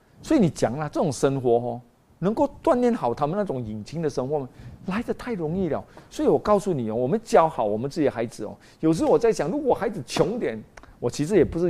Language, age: Chinese, 50-69